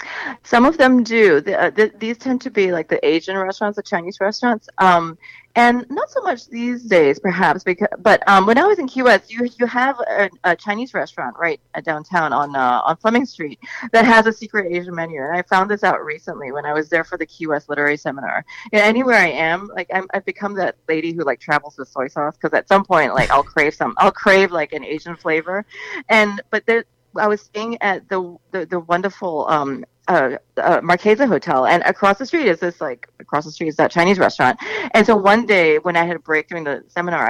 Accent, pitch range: American, 160-215 Hz